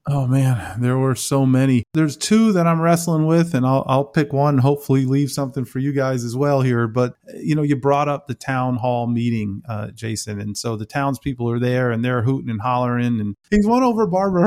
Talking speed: 230 wpm